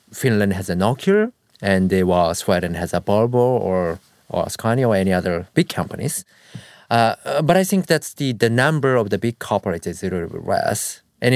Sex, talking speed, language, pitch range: male, 200 wpm, English, 95-135 Hz